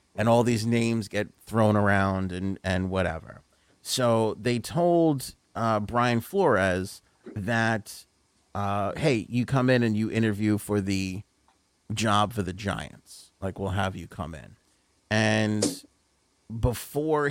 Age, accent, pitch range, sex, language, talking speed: 30-49, American, 100-120 Hz, male, English, 135 wpm